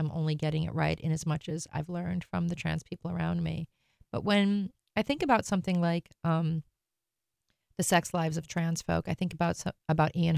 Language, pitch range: English, 150-175 Hz